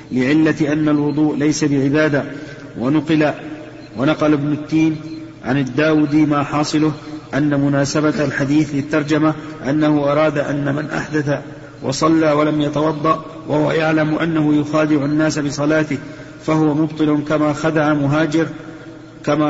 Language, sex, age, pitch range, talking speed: Arabic, male, 50-69, 145-155 Hz, 115 wpm